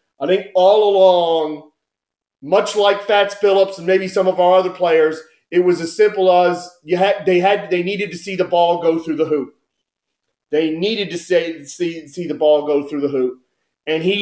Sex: male